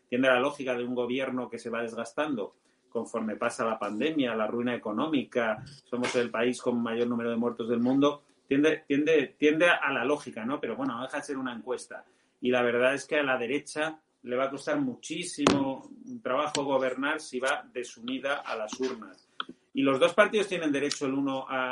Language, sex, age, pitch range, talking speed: Spanish, male, 30-49, 125-155 Hz, 200 wpm